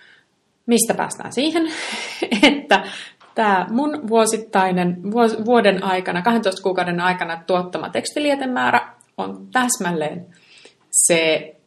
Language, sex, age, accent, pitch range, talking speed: Finnish, female, 30-49, native, 170-210 Hz, 100 wpm